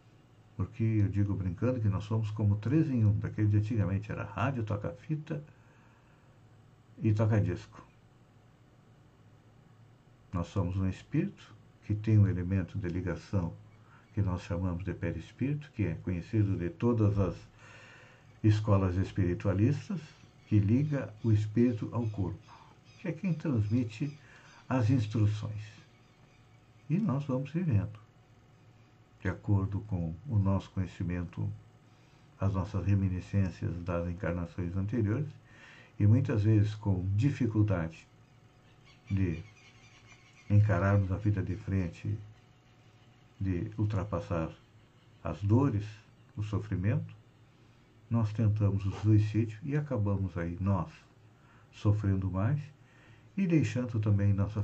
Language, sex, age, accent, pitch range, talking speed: Portuguese, male, 60-79, Brazilian, 100-125 Hz, 110 wpm